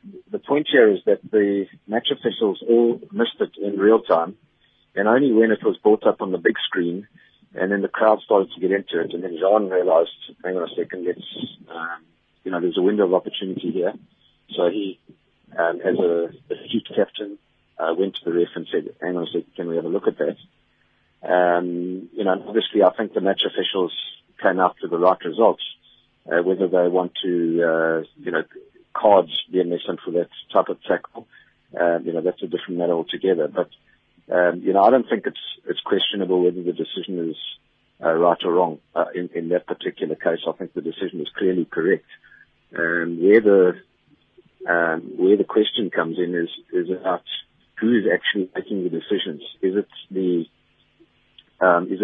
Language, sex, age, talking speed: English, male, 40-59, 195 wpm